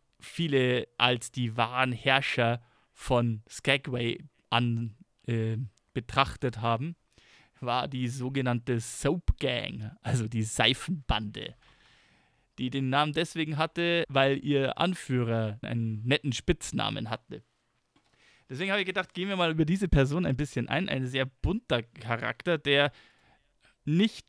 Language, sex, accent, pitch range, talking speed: German, male, German, 125-155 Hz, 125 wpm